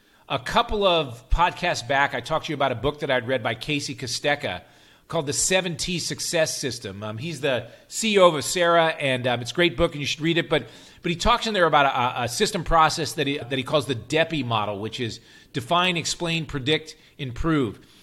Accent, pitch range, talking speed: American, 140-180 Hz, 215 wpm